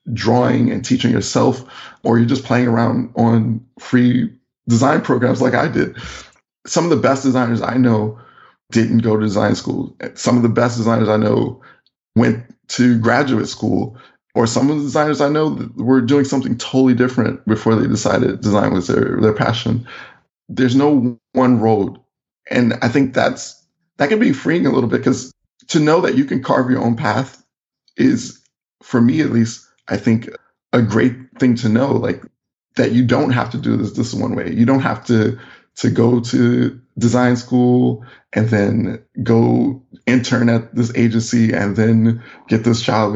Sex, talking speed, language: male, 180 wpm, English